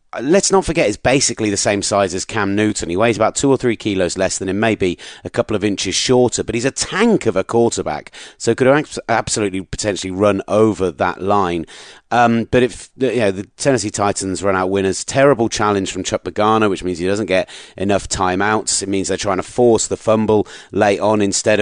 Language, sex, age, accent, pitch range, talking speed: English, male, 30-49, British, 95-115 Hz, 210 wpm